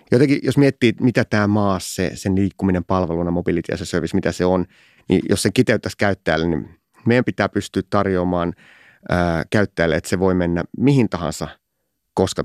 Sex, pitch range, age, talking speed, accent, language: male, 85-105 Hz, 30-49, 165 wpm, native, Finnish